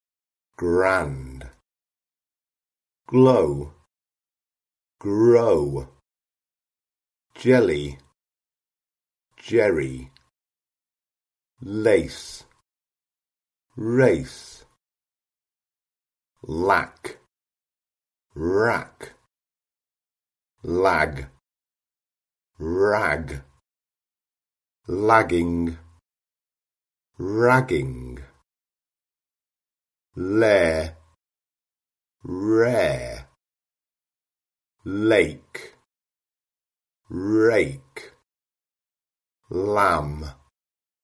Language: Chinese